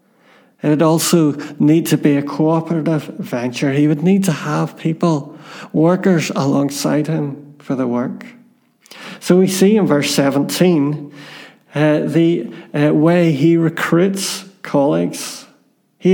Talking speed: 130 wpm